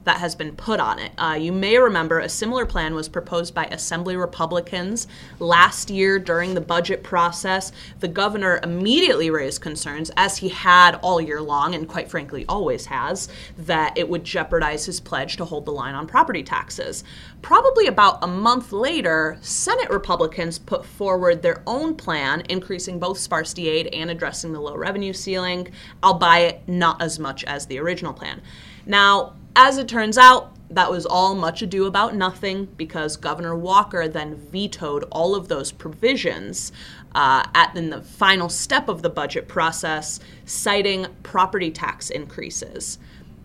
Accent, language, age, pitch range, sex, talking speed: American, English, 30-49, 165-200 Hz, female, 160 wpm